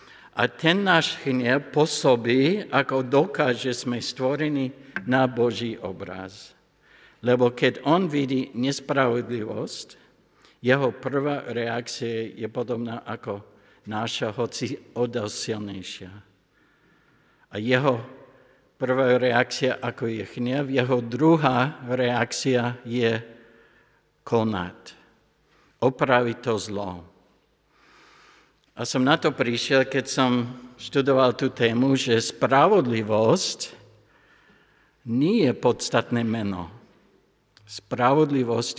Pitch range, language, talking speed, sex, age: 110-130 Hz, Slovak, 90 wpm, male, 60-79